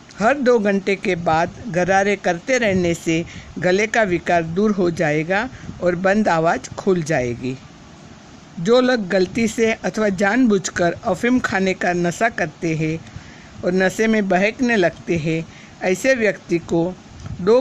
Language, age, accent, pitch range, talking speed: Hindi, 50-69, native, 170-215 Hz, 145 wpm